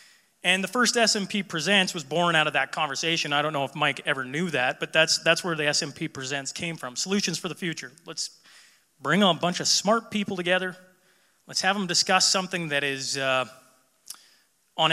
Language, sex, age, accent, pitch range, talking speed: English, male, 30-49, American, 145-185 Hz, 195 wpm